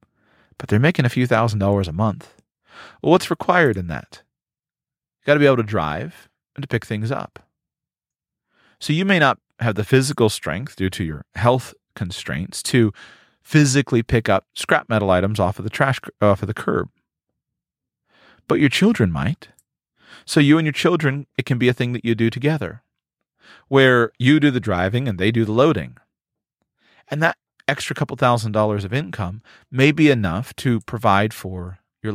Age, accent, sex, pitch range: 40-59, American, male, 100-130 Hz